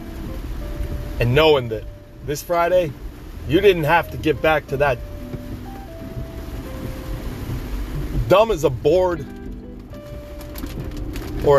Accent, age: American, 40-59